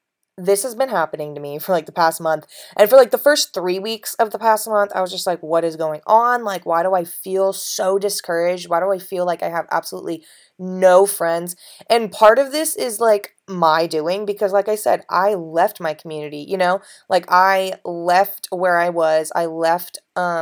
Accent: American